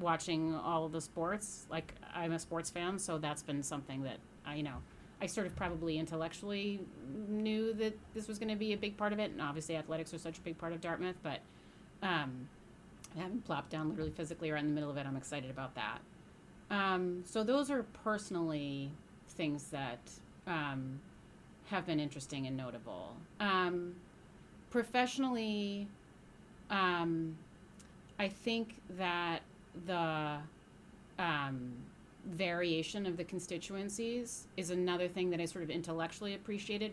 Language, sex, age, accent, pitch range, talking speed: English, female, 30-49, American, 155-195 Hz, 155 wpm